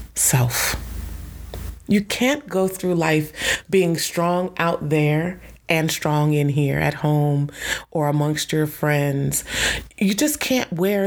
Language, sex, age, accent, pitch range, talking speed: English, female, 30-49, American, 145-180 Hz, 130 wpm